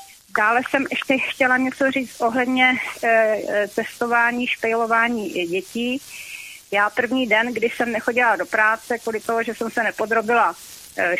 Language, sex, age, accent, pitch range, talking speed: Czech, female, 40-59, native, 205-235 Hz, 140 wpm